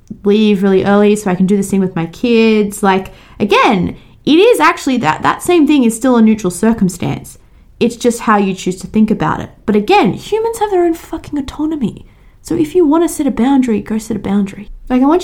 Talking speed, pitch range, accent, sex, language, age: 230 wpm, 185-265 Hz, Australian, female, English, 20-39